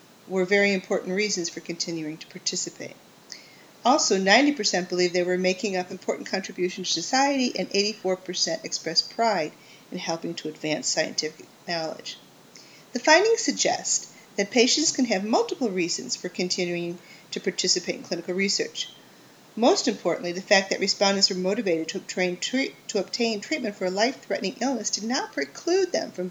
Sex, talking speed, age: female, 155 wpm, 40-59